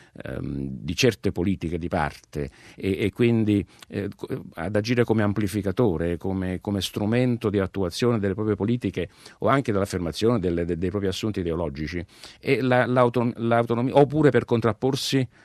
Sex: male